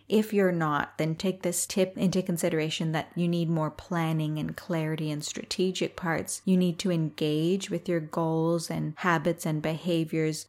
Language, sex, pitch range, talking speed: English, female, 160-185 Hz, 170 wpm